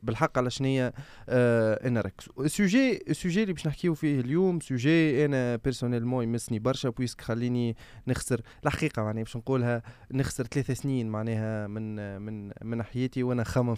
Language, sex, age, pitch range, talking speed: Arabic, male, 20-39, 115-150 Hz, 150 wpm